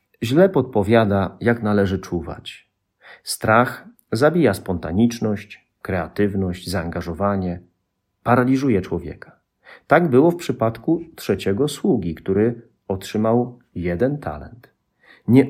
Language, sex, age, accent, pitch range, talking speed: Polish, male, 40-59, native, 95-125 Hz, 90 wpm